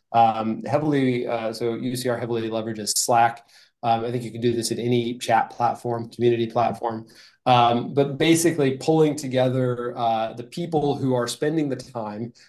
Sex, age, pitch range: male, 20-39, 120-135 Hz